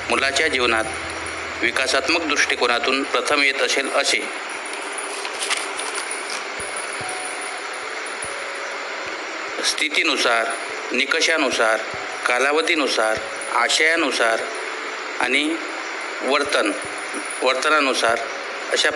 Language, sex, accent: Marathi, male, native